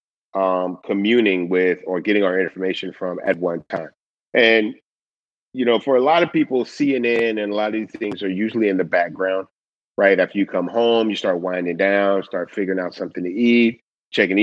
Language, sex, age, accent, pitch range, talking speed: English, male, 30-49, American, 95-115 Hz, 195 wpm